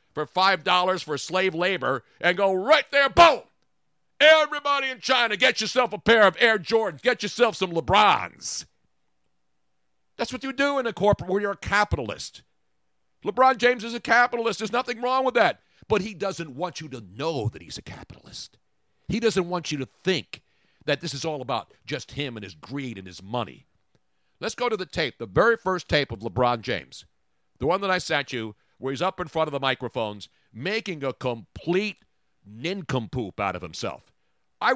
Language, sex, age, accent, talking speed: English, male, 50-69, American, 190 wpm